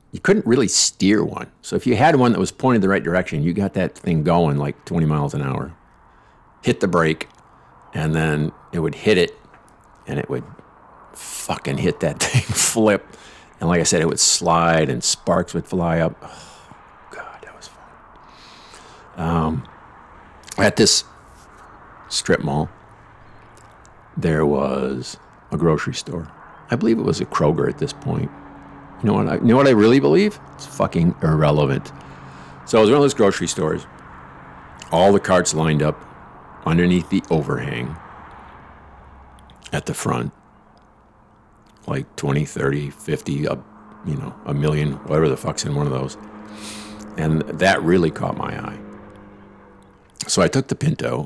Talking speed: 160 wpm